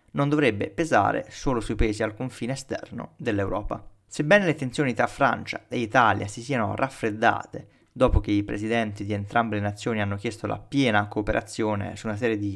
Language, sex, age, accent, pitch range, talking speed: Italian, male, 20-39, native, 105-135 Hz, 175 wpm